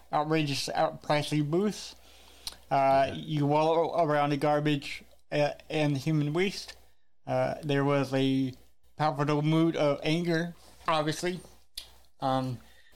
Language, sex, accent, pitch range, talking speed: English, male, American, 140-160 Hz, 100 wpm